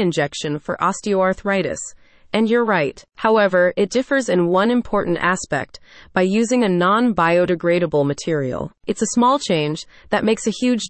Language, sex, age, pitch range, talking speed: English, female, 30-49, 170-230 Hz, 145 wpm